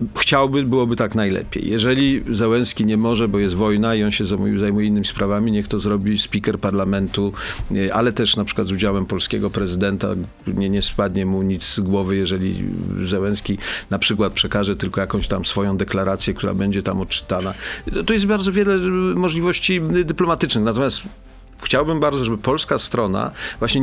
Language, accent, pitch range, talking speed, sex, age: Polish, native, 100-125 Hz, 160 wpm, male, 50-69